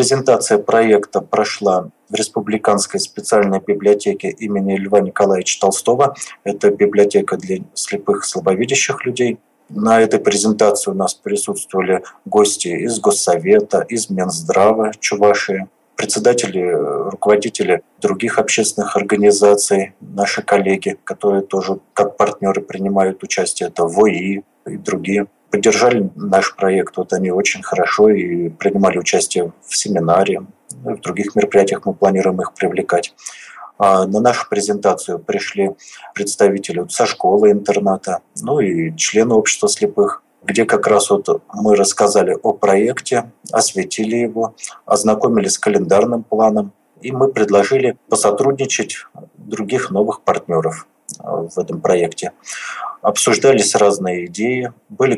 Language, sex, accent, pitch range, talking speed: Russian, male, native, 100-120 Hz, 120 wpm